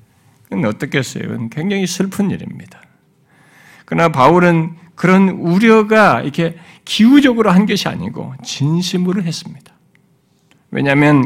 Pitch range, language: 160-235 Hz, Korean